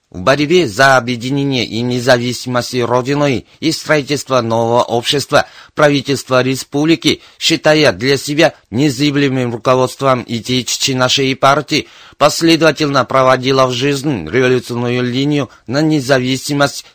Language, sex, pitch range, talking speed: Russian, male, 125-145 Hz, 105 wpm